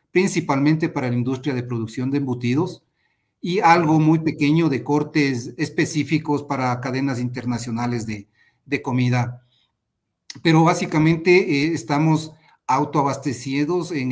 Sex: male